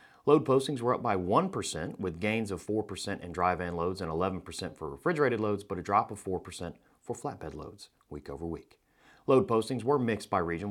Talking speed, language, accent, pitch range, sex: 190 wpm, English, American, 85-125 Hz, male